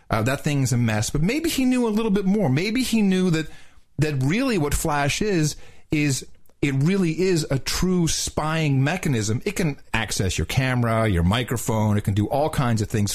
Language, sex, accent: English, male, American